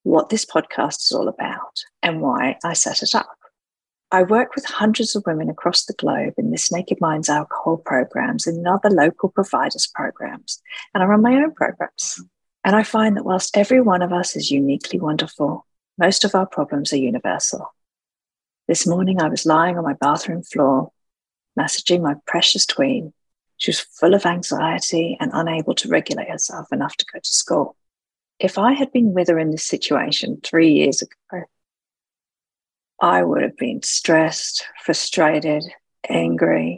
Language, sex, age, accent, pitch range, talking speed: English, female, 50-69, British, 165-220 Hz, 170 wpm